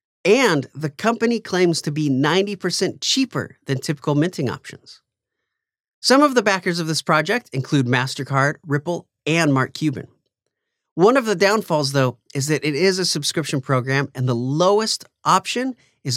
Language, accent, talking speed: English, American, 155 wpm